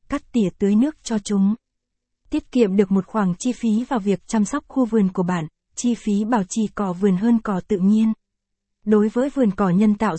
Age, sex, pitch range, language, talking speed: 20-39, female, 200-235 Hz, Vietnamese, 220 wpm